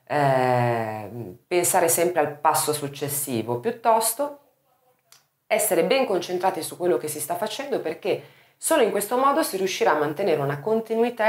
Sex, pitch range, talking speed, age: female, 140-220 Hz, 145 wpm, 30-49